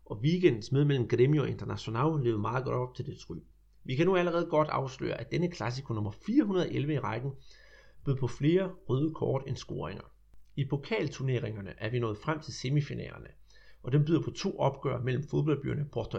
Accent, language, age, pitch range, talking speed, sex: native, Danish, 30-49, 115-155 Hz, 185 wpm, male